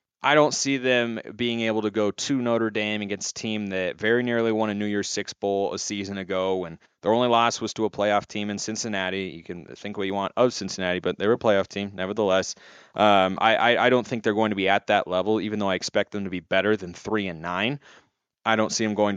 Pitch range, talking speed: 105-130 Hz, 255 wpm